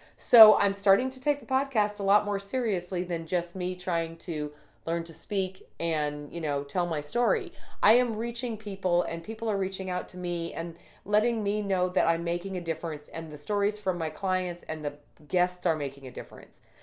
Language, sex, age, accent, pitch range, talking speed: English, female, 30-49, American, 160-205 Hz, 205 wpm